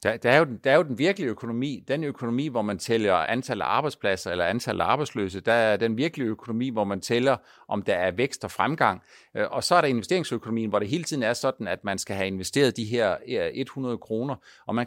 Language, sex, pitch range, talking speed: Danish, male, 115-150 Hz, 220 wpm